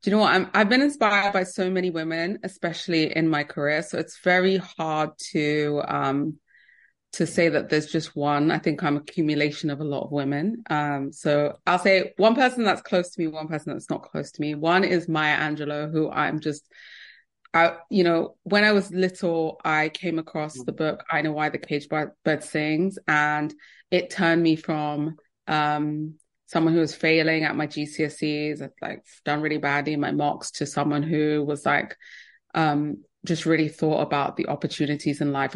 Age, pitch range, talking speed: 20-39, 150-175 Hz, 195 wpm